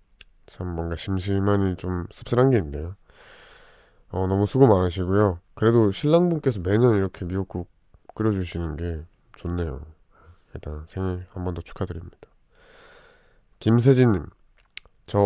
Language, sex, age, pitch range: Korean, male, 20-39, 90-120 Hz